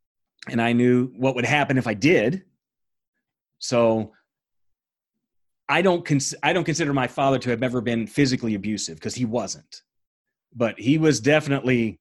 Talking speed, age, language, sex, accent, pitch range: 155 wpm, 30-49, English, male, American, 115-140 Hz